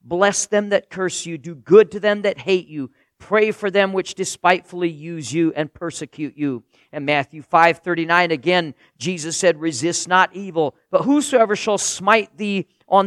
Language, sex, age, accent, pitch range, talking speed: English, male, 50-69, American, 150-185 Hz, 170 wpm